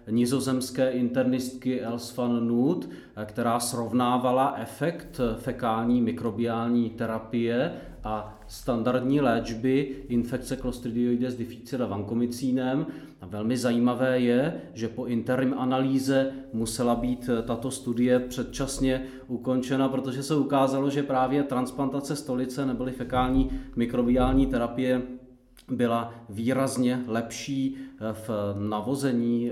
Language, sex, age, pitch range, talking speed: Czech, male, 40-59, 115-130 Hz, 100 wpm